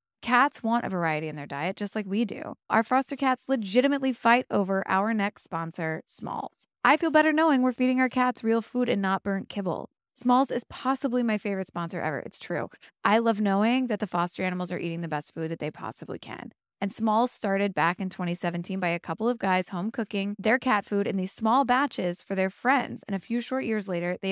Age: 20-39